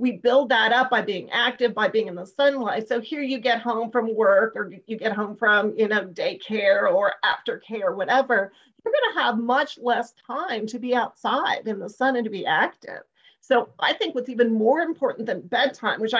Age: 40-59